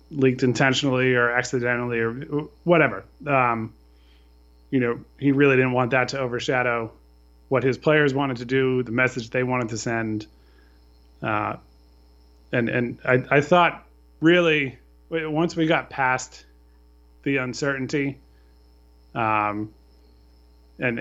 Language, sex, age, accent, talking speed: English, male, 20-39, American, 125 wpm